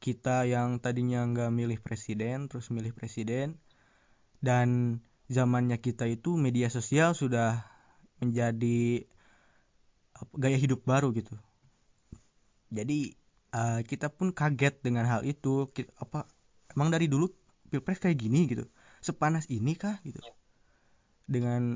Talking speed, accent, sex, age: 120 wpm, native, male, 20-39